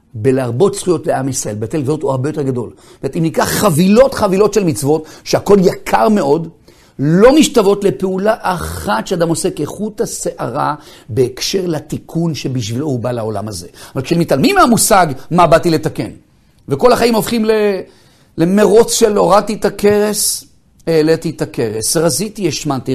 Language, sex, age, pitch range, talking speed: Hebrew, male, 50-69, 135-220 Hz, 145 wpm